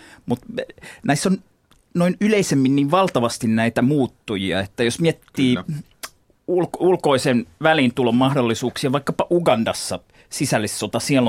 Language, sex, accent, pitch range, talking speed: Finnish, male, native, 110-140 Hz, 105 wpm